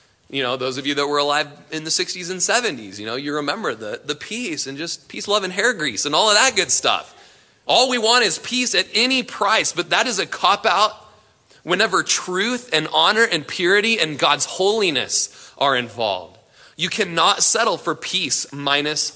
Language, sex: English, male